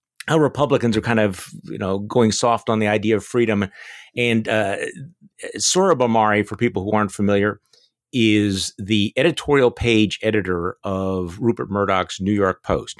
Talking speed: 155 wpm